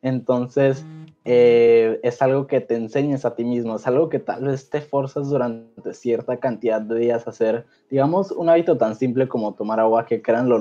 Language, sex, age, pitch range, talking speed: Spanish, male, 20-39, 115-135 Hz, 190 wpm